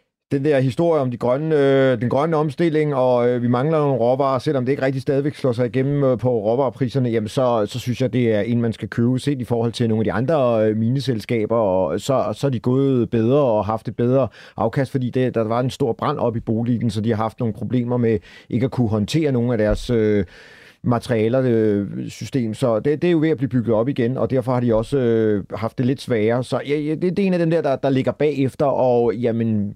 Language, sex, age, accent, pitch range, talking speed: Danish, male, 30-49, native, 110-135 Hz, 250 wpm